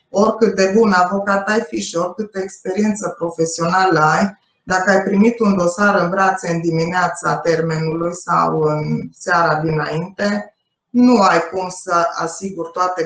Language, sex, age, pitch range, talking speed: Romanian, female, 20-39, 165-195 Hz, 145 wpm